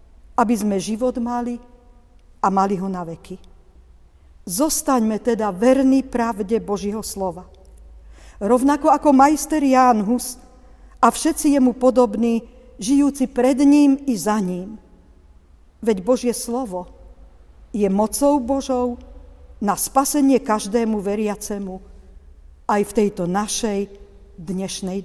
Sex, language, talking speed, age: female, Slovak, 105 wpm, 50-69